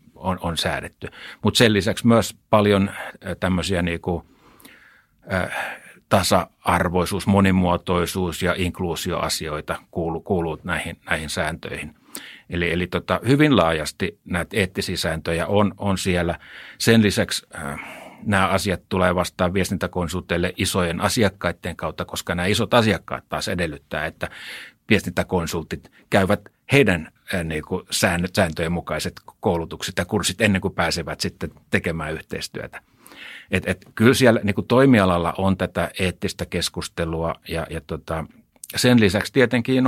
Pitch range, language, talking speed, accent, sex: 85-105 Hz, Finnish, 125 wpm, native, male